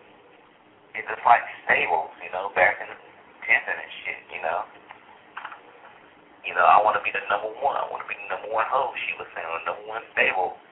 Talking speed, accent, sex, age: 215 wpm, American, male, 30-49